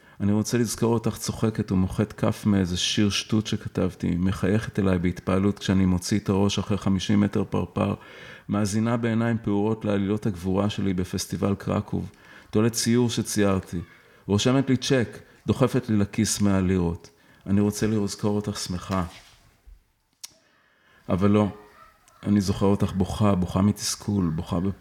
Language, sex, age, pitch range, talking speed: Hebrew, male, 30-49, 95-110 Hz, 130 wpm